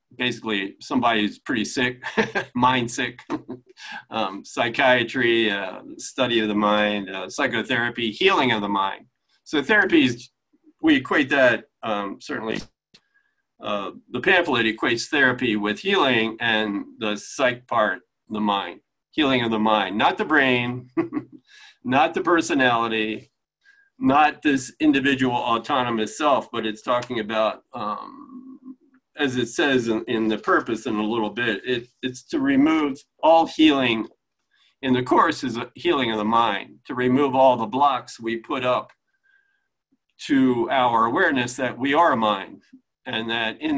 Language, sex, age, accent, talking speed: English, male, 40-59, American, 145 wpm